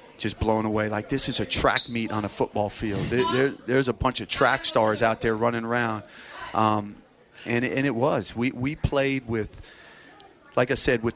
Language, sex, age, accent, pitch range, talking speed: English, male, 40-59, American, 105-120 Hz, 195 wpm